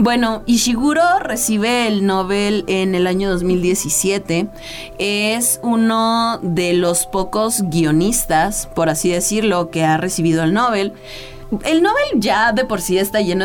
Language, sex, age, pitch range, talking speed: Spanish, female, 30-49, 165-225 Hz, 140 wpm